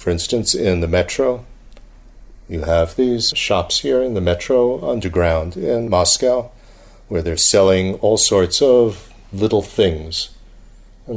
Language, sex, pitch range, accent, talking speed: English, male, 90-125 Hz, American, 135 wpm